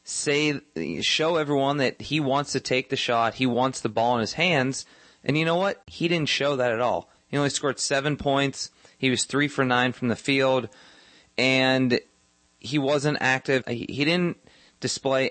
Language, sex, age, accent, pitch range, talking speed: English, male, 30-49, American, 110-135 Hz, 185 wpm